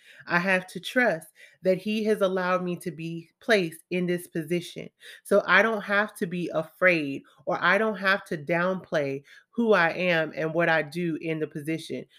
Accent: American